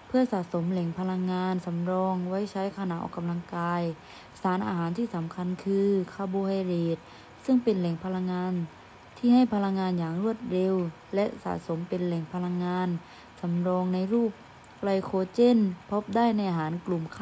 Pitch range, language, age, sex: 175-200 Hz, Thai, 20-39, female